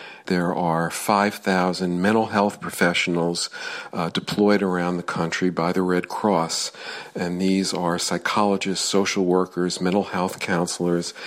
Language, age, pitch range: English, 50-69, 85-95 Hz